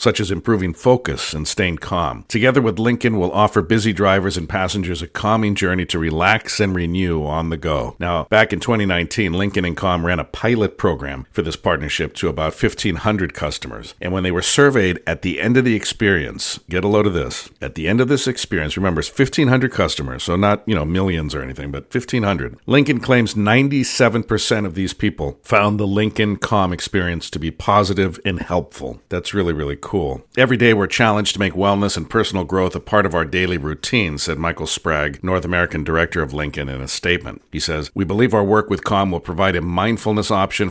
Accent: American